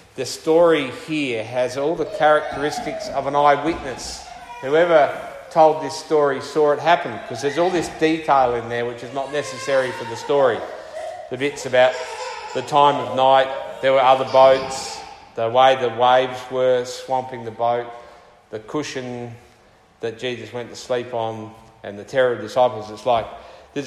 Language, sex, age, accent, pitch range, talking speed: English, male, 40-59, Australian, 120-145 Hz, 165 wpm